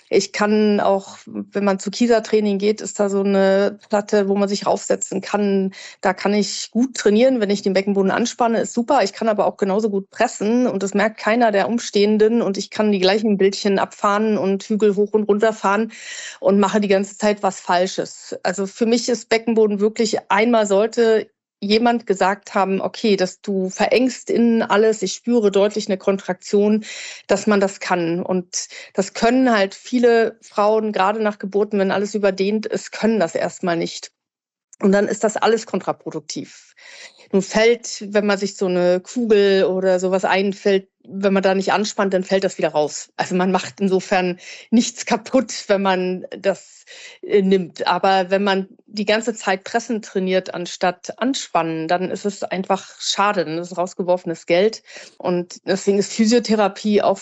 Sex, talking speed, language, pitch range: female, 175 wpm, German, 190-220 Hz